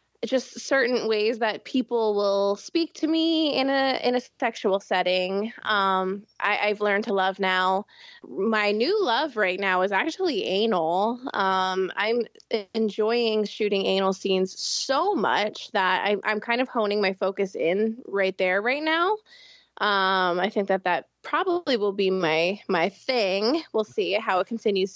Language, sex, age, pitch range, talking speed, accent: English, female, 20-39, 195-270 Hz, 160 wpm, American